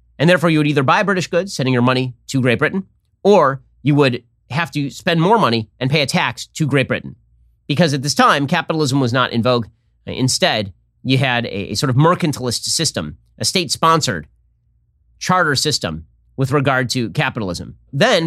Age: 30-49